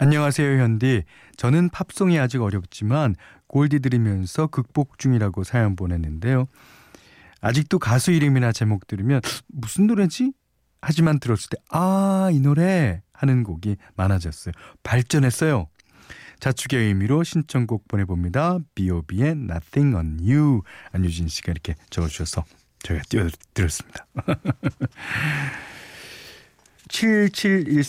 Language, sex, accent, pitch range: Korean, male, native, 95-145 Hz